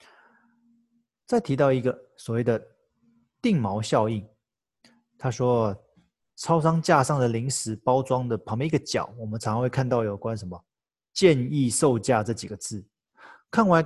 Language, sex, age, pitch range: Chinese, male, 20-39, 110-140 Hz